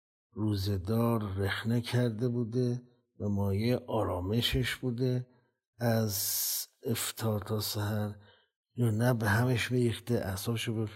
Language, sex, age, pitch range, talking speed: Persian, male, 50-69, 100-125 Hz, 105 wpm